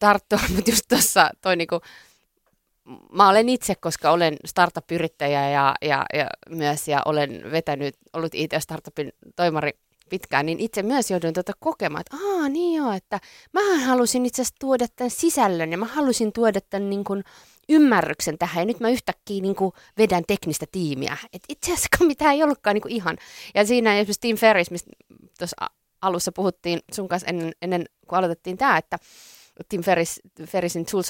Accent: native